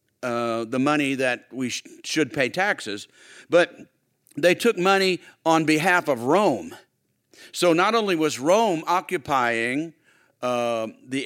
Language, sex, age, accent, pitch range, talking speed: English, male, 50-69, American, 125-175 Hz, 130 wpm